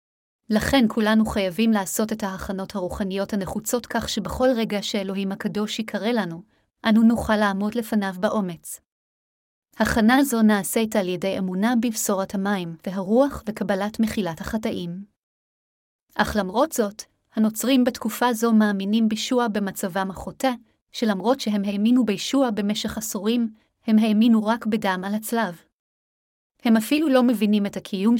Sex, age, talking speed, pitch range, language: female, 30-49, 125 wpm, 195-230 Hz, Hebrew